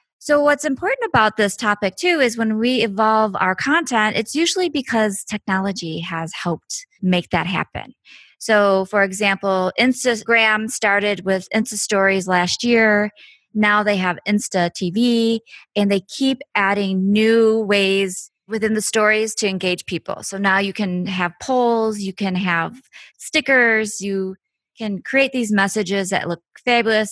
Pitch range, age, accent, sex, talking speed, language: 185-225 Hz, 20-39, American, female, 150 wpm, English